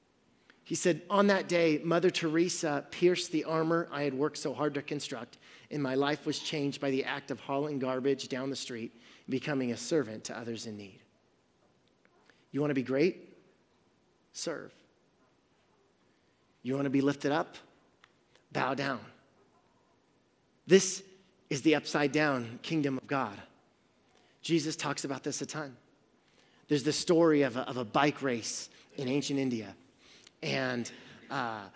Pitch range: 135-175 Hz